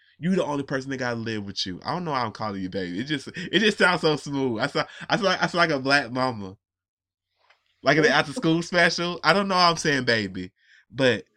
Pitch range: 110-160 Hz